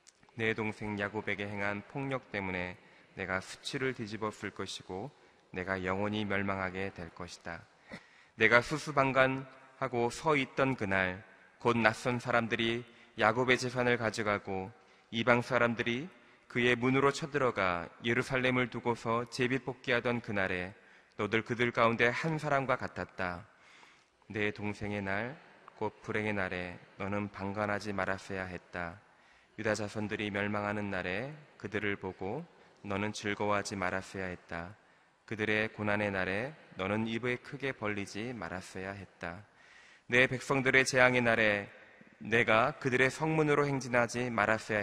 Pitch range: 100-120 Hz